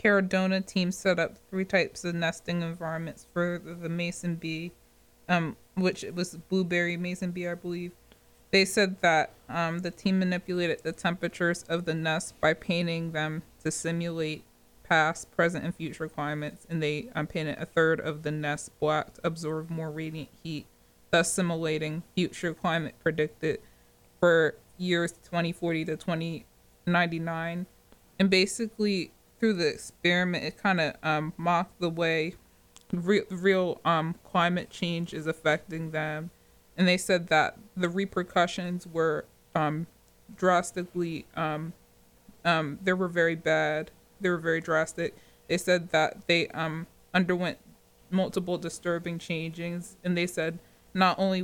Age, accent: 20-39, American